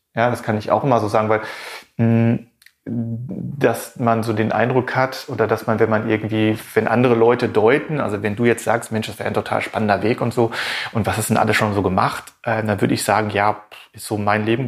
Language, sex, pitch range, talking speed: German, male, 110-125 Hz, 235 wpm